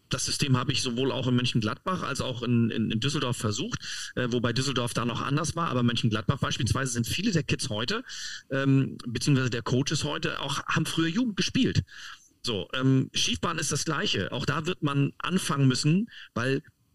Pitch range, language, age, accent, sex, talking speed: 120-155 Hz, German, 40-59, German, male, 190 wpm